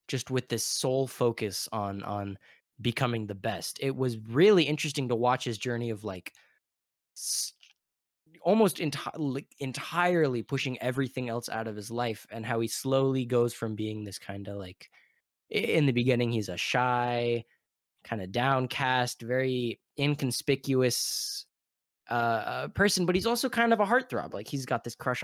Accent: American